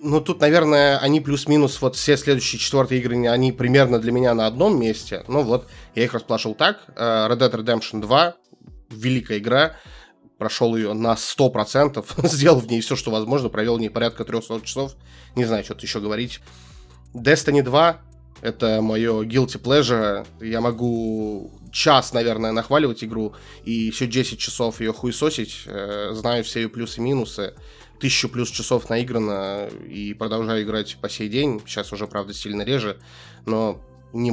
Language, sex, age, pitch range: Russian, male, 20-39, 105-125 Hz